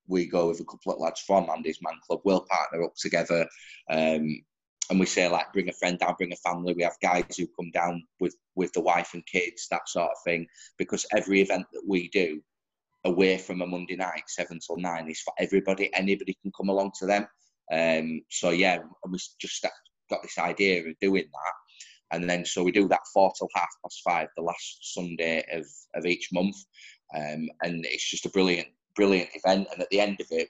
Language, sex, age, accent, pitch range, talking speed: English, male, 20-39, British, 85-95 Hz, 215 wpm